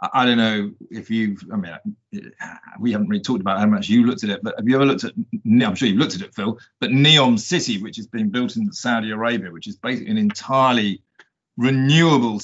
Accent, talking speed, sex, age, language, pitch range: British, 225 wpm, male, 40-59, English, 115-175 Hz